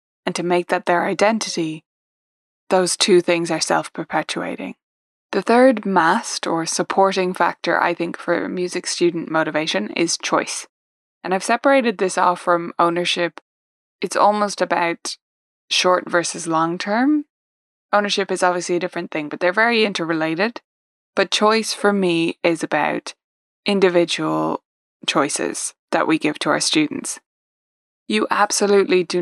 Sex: female